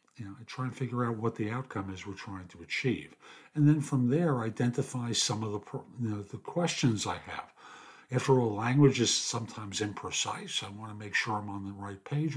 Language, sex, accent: English, male, American